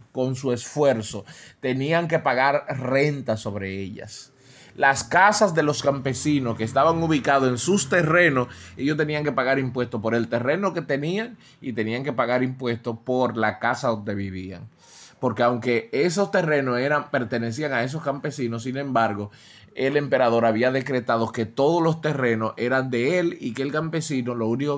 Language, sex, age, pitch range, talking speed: Spanish, male, 20-39, 120-150 Hz, 165 wpm